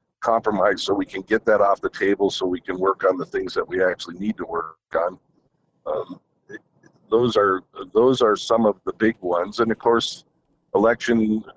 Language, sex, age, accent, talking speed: English, male, 50-69, American, 190 wpm